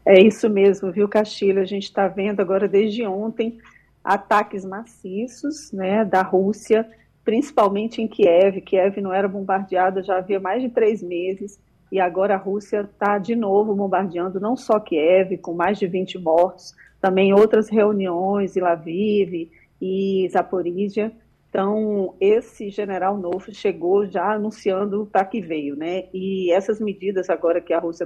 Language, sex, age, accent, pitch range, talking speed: Portuguese, female, 40-59, Brazilian, 185-210 Hz, 150 wpm